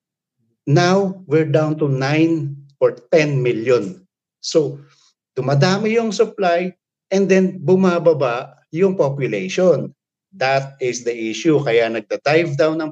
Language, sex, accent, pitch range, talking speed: Filipino, male, native, 150-190 Hz, 115 wpm